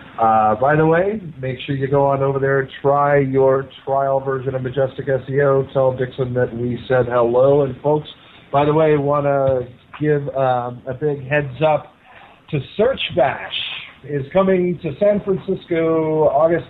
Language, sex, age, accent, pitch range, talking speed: English, male, 40-59, American, 115-145 Hz, 170 wpm